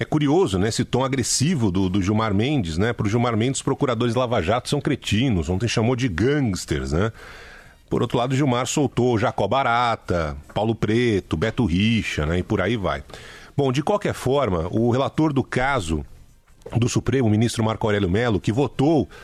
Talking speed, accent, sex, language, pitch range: 185 wpm, Brazilian, male, Portuguese, 115-160 Hz